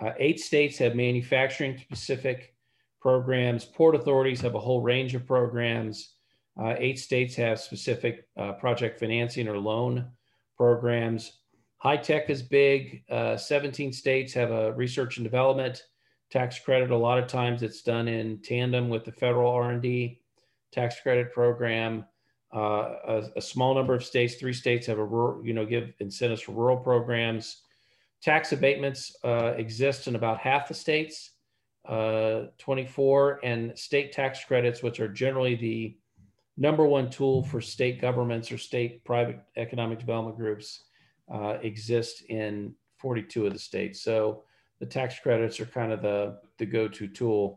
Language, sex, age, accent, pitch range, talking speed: English, male, 40-59, American, 115-130 Hz, 155 wpm